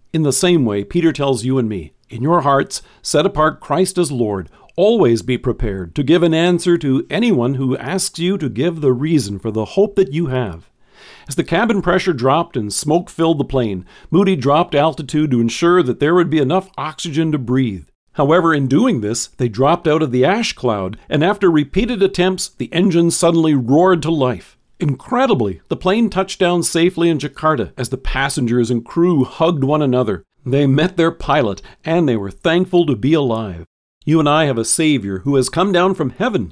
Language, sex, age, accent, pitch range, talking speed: English, male, 50-69, American, 125-175 Hz, 200 wpm